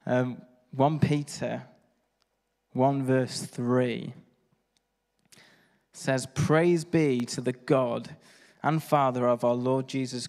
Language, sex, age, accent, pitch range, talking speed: English, male, 20-39, British, 125-145 Hz, 105 wpm